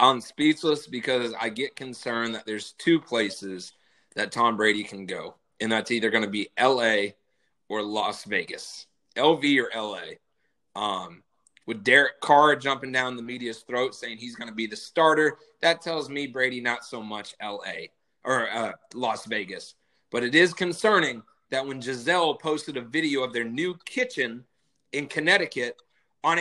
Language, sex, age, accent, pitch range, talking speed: English, male, 30-49, American, 120-155 Hz, 165 wpm